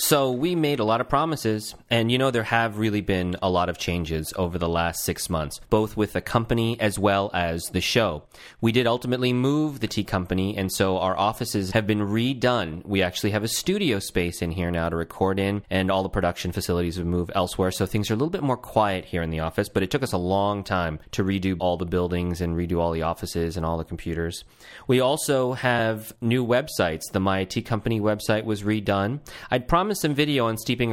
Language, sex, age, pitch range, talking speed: English, male, 30-49, 90-120 Hz, 225 wpm